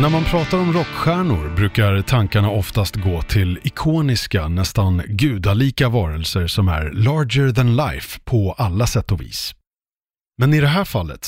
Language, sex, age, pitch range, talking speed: Swedish, male, 30-49, 100-135 Hz, 155 wpm